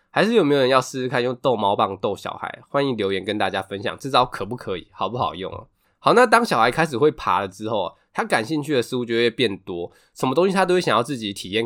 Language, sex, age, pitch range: Chinese, male, 20-39, 105-160 Hz